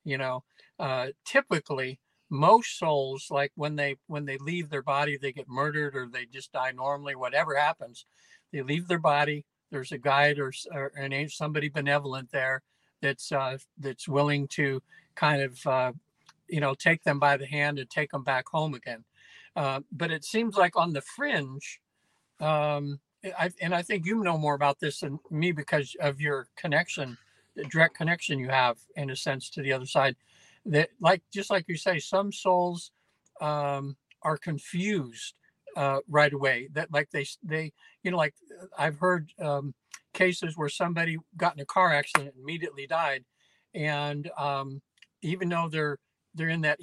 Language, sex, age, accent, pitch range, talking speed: English, male, 60-79, American, 140-165 Hz, 175 wpm